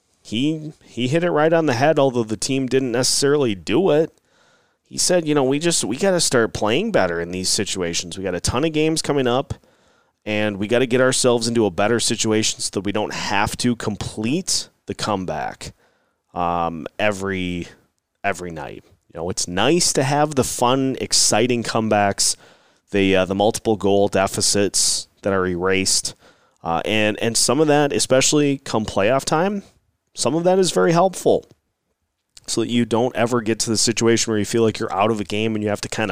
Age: 30-49